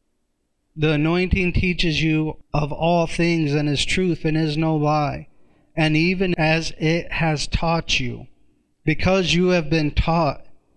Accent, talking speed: American, 145 wpm